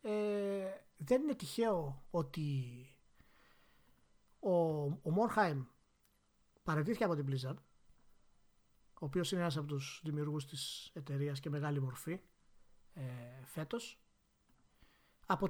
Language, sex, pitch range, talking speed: Greek, male, 145-195 Hz, 105 wpm